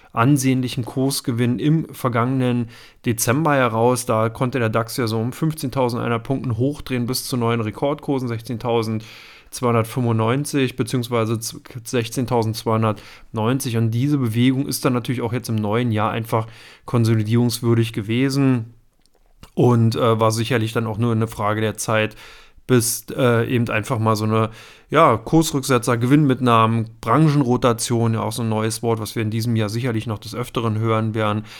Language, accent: German, German